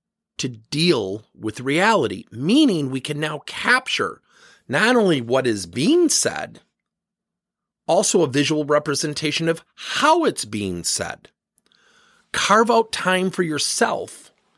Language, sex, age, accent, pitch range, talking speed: English, male, 40-59, American, 150-230 Hz, 120 wpm